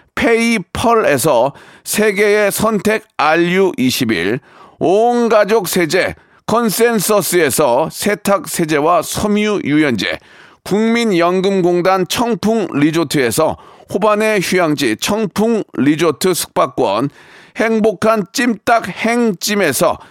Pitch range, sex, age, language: 180-225 Hz, male, 40-59, Korean